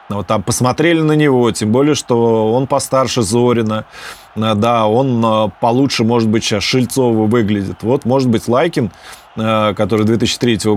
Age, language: 20-39, Russian